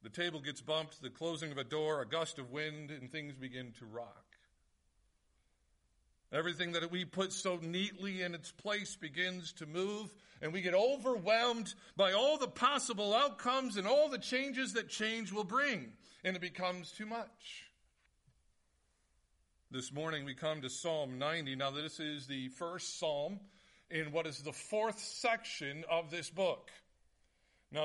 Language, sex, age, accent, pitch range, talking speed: English, male, 50-69, American, 150-200 Hz, 160 wpm